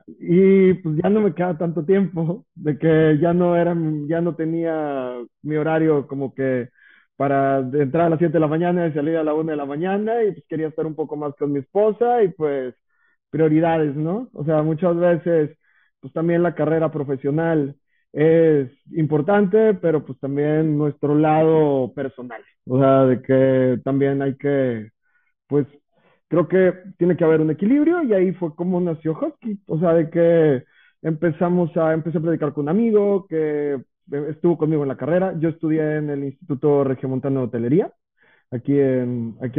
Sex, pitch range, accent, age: male, 140-175 Hz, Mexican, 30-49